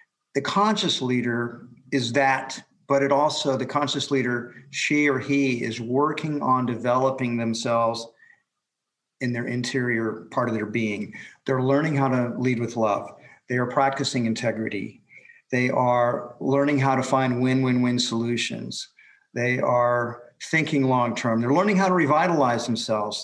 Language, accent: English, American